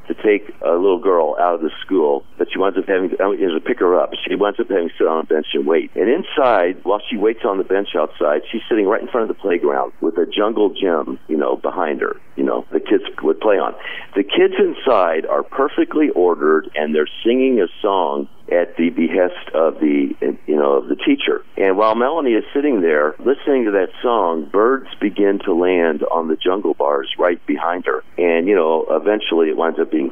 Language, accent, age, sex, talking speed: English, American, 50-69, male, 220 wpm